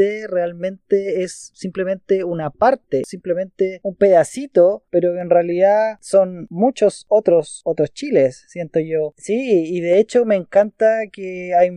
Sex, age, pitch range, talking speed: male, 20-39, 175-215 Hz, 135 wpm